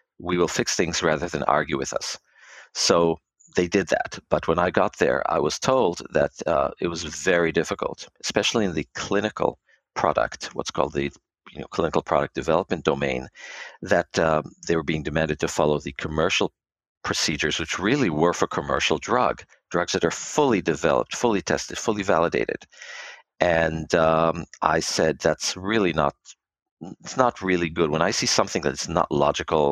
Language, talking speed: English, 170 wpm